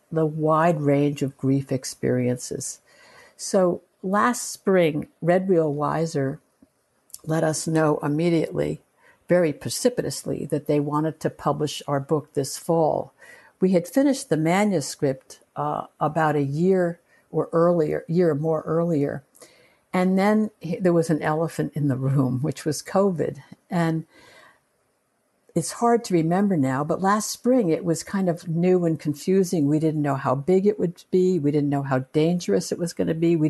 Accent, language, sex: American, English, female